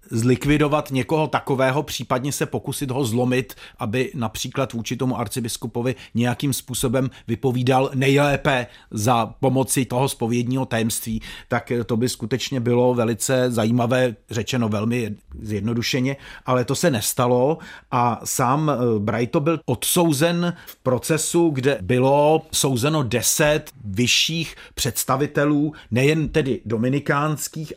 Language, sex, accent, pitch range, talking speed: Czech, male, native, 115-140 Hz, 110 wpm